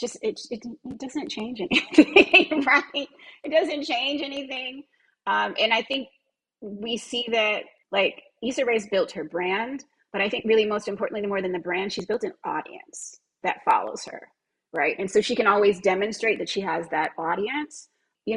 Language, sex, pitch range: English, female, 190-275 Hz